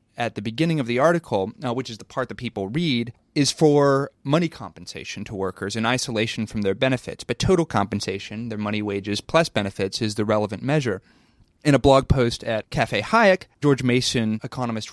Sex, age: male, 30-49